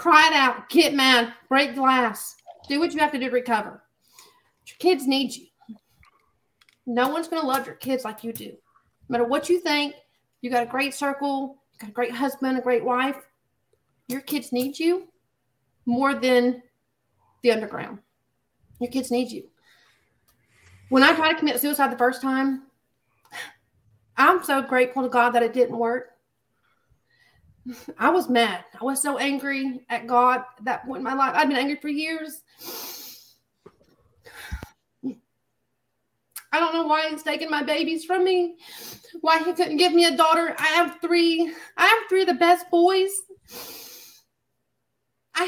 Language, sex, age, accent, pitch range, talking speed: English, female, 40-59, American, 255-335 Hz, 165 wpm